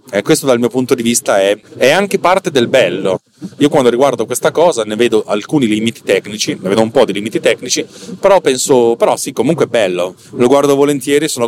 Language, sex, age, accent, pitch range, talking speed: Italian, male, 30-49, native, 110-140 Hz, 220 wpm